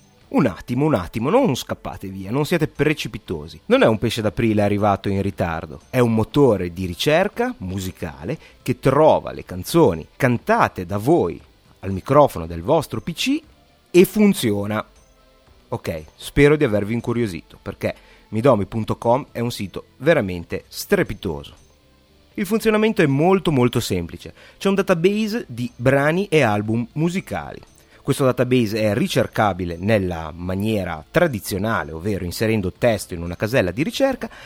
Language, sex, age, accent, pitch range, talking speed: Italian, male, 30-49, native, 95-150 Hz, 140 wpm